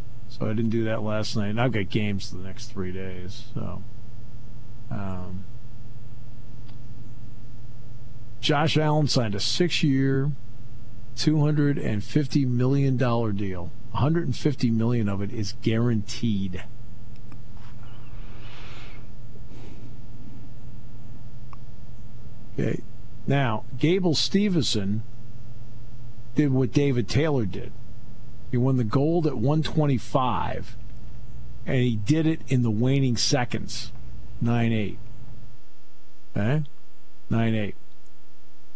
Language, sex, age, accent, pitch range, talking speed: English, male, 50-69, American, 105-130 Hz, 100 wpm